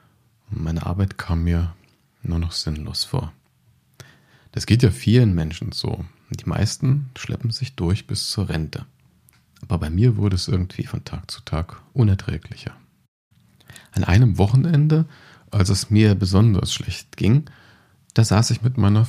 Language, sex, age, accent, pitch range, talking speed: German, male, 40-59, German, 100-130 Hz, 150 wpm